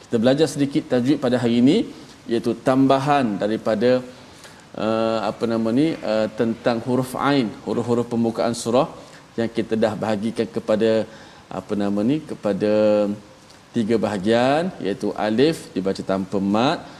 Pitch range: 110-140 Hz